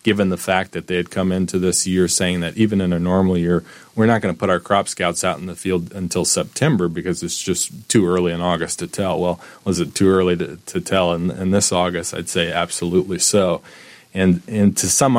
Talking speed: 235 wpm